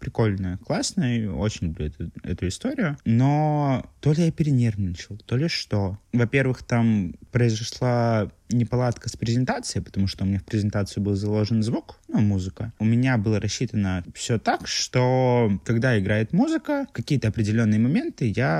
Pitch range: 95-125 Hz